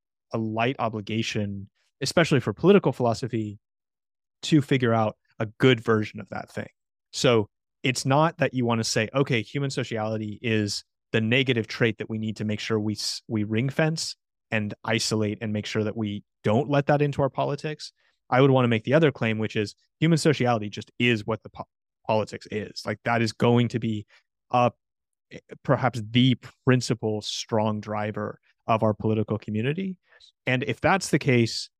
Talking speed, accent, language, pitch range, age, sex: 175 wpm, American, English, 105-125 Hz, 30-49, male